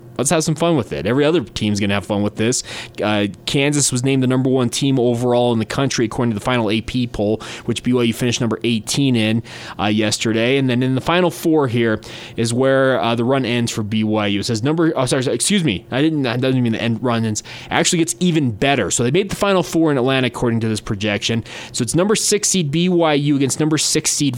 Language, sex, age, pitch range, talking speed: English, male, 20-39, 115-155 Hz, 240 wpm